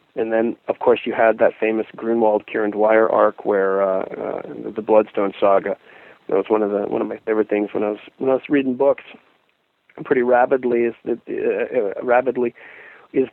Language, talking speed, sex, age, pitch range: English, 205 wpm, male, 40-59, 110-175 Hz